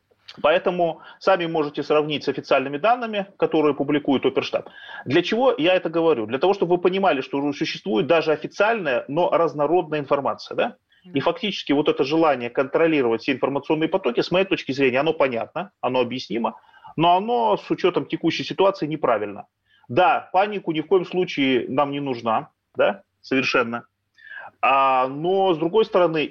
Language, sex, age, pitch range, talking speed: Russian, male, 30-49, 140-190 Hz, 150 wpm